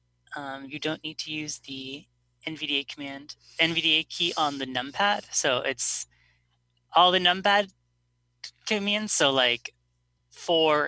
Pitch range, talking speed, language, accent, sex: 125-165 Hz, 125 wpm, English, American, female